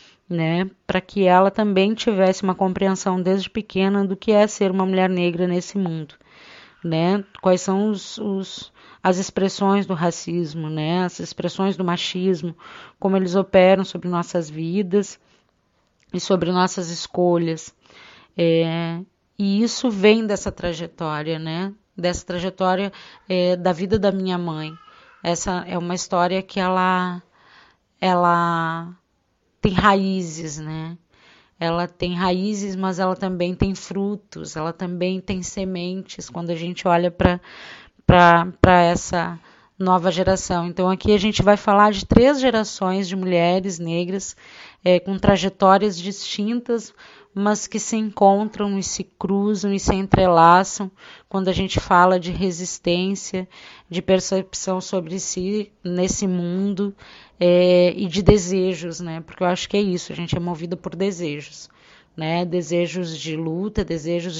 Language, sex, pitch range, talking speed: Portuguese, female, 175-195 Hz, 130 wpm